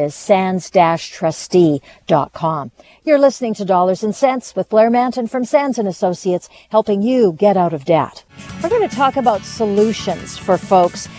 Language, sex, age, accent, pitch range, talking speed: English, female, 50-69, American, 180-225 Hz, 150 wpm